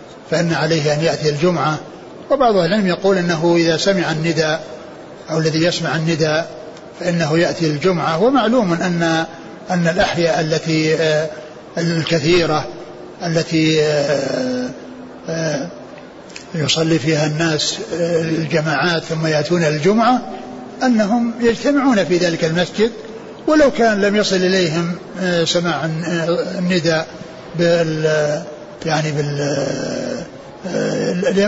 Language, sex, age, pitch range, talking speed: Arabic, male, 60-79, 160-185 Hz, 90 wpm